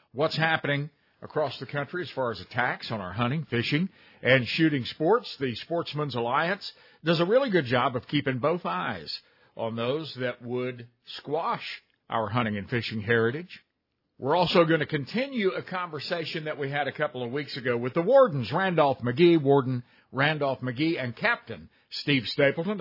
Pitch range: 125-175 Hz